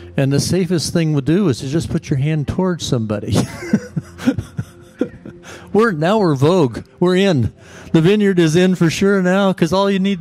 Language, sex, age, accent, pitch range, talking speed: English, male, 50-69, American, 115-165 Hz, 190 wpm